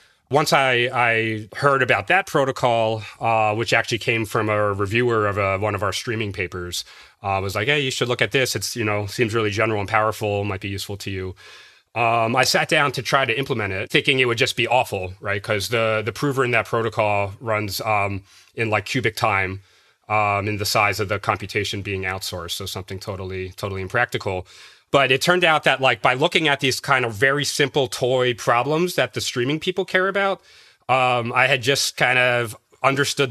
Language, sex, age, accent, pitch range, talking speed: English, male, 30-49, American, 105-130 Hz, 210 wpm